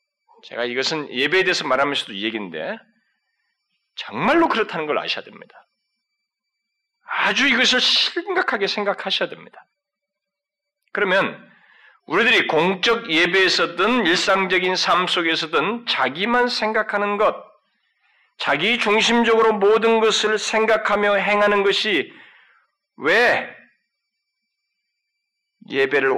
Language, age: Korean, 40-59